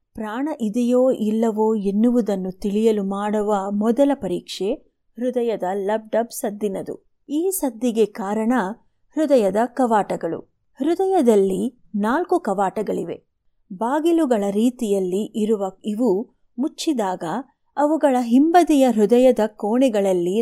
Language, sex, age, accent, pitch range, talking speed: Kannada, female, 30-49, native, 210-280 Hz, 80 wpm